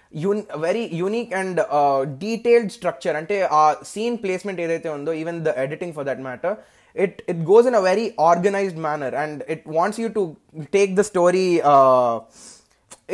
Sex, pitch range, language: male, 145-190 Hz, Telugu